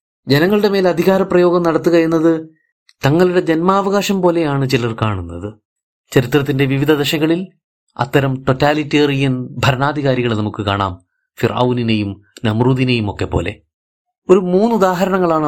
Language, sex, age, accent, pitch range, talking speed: Malayalam, male, 30-49, native, 120-160 Hz, 95 wpm